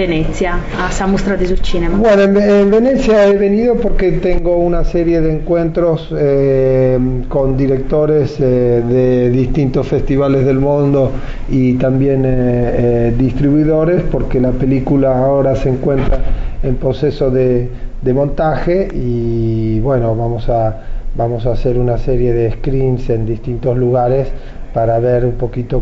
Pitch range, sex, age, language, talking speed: 125-150 Hz, male, 40-59, Italian, 130 wpm